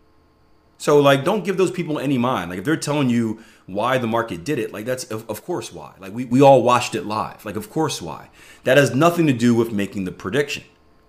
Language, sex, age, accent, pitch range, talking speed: English, male, 30-49, American, 90-130 Hz, 235 wpm